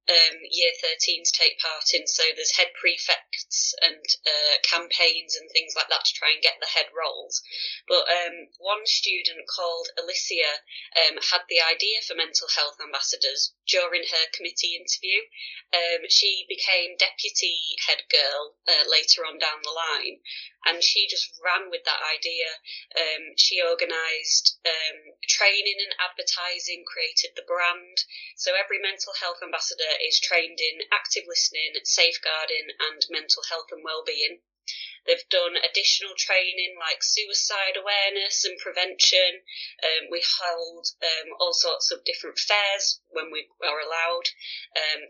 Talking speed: 150 wpm